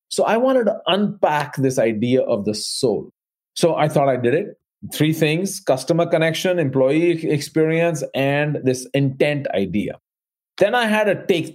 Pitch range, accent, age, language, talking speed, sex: 135-170 Hz, Indian, 40-59, English, 160 wpm, male